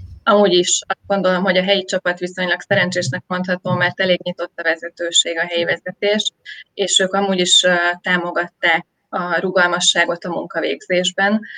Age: 20-39